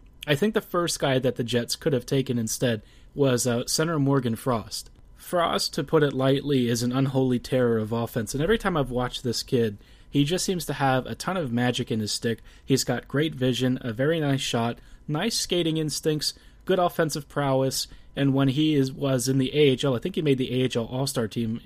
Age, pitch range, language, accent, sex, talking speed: 30-49, 120-145 Hz, English, American, male, 215 wpm